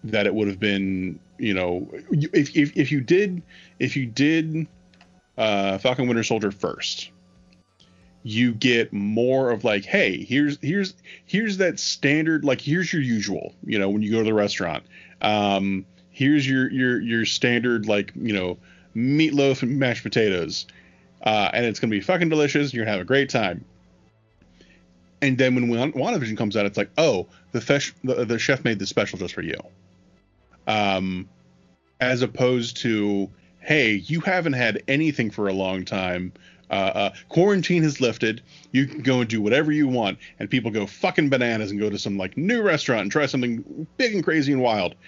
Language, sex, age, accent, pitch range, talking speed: English, male, 30-49, American, 95-135 Hz, 180 wpm